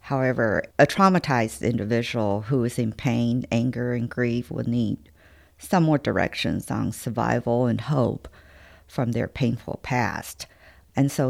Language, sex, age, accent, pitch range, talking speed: English, female, 50-69, American, 100-140 Hz, 140 wpm